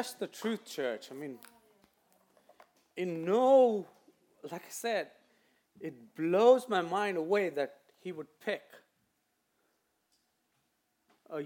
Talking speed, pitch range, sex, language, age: 105 wpm, 150-205 Hz, male, English, 40-59